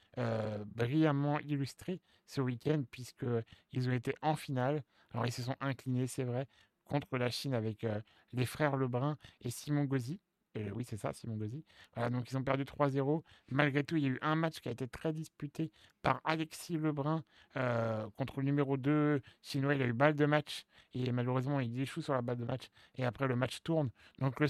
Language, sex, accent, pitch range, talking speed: French, male, French, 125-150 Hz, 205 wpm